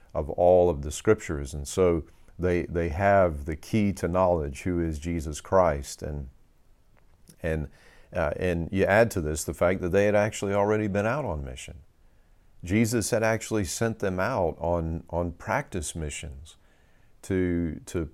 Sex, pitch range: male, 80-95 Hz